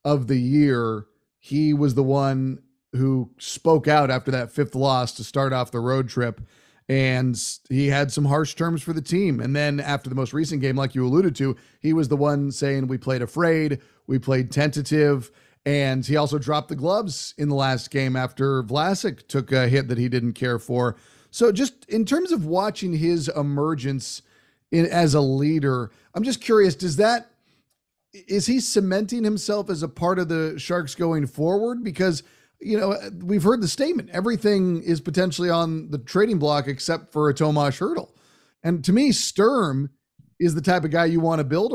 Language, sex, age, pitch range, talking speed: English, male, 40-59, 135-180 Hz, 190 wpm